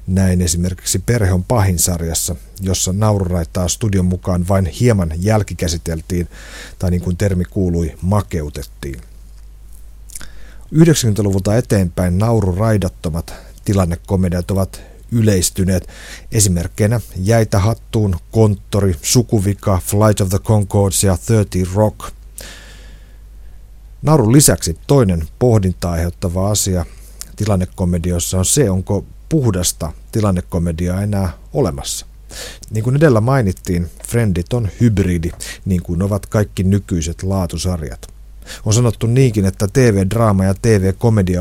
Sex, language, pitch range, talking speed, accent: male, Finnish, 90-105 Hz, 105 wpm, native